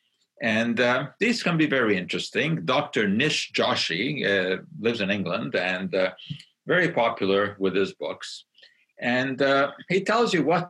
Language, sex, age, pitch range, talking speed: English, male, 50-69, 100-160 Hz, 150 wpm